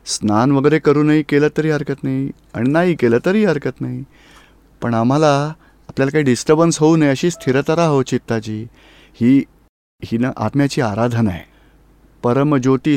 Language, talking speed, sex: Gujarati, 125 wpm, male